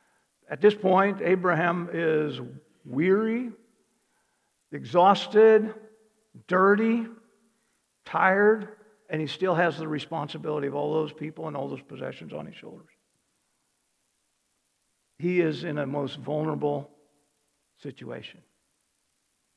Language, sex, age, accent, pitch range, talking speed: English, male, 60-79, American, 170-220 Hz, 100 wpm